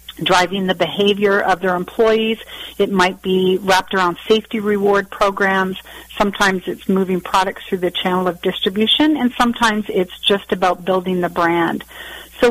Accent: American